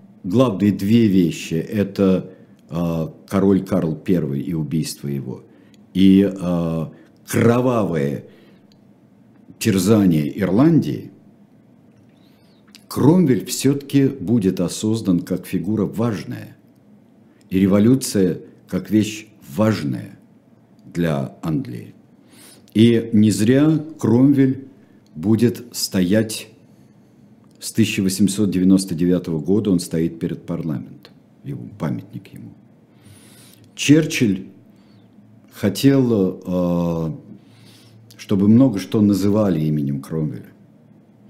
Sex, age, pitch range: male, 50-69, 90-120 Hz